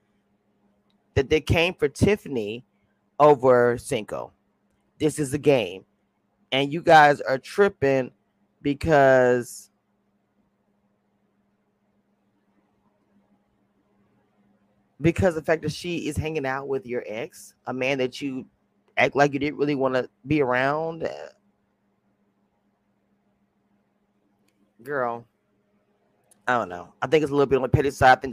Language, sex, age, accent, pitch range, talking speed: English, male, 30-49, American, 105-150 Hz, 120 wpm